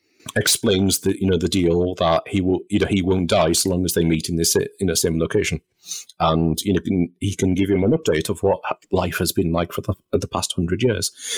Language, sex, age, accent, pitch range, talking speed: English, male, 40-59, British, 90-105 Hz, 245 wpm